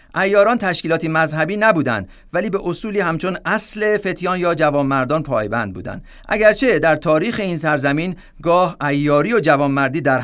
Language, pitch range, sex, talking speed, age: Persian, 135-185 Hz, male, 140 wpm, 50-69